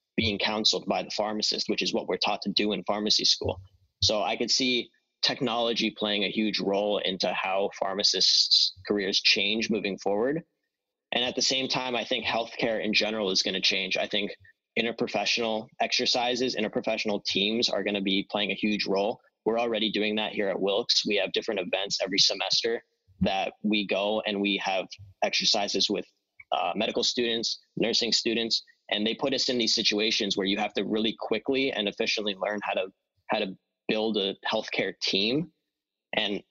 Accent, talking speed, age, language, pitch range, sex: American, 175 wpm, 20-39, English, 100-120 Hz, male